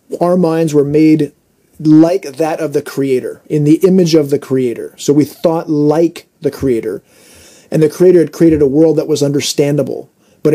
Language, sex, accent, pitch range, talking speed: English, male, American, 145-170 Hz, 180 wpm